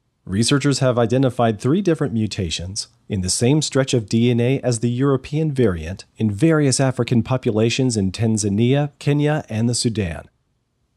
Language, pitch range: English, 110-145 Hz